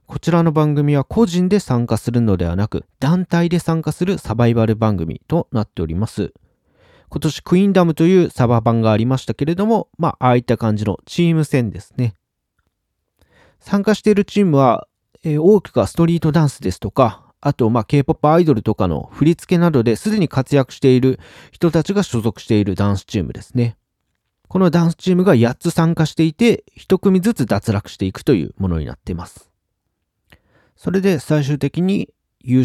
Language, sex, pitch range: Japanese, male, 110-170 Hz